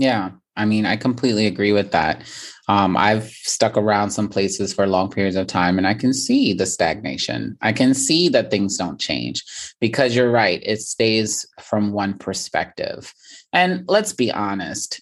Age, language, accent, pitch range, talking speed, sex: 30-49, English, American, 105-125 Hz, 175 wpm, male